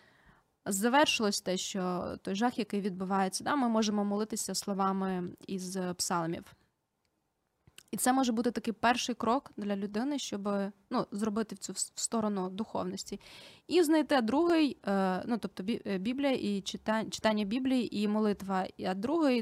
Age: 20-39